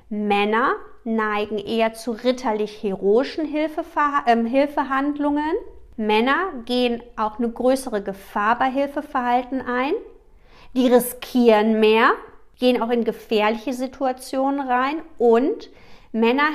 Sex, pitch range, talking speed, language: female, 225-280 Hz, 100 wpm, German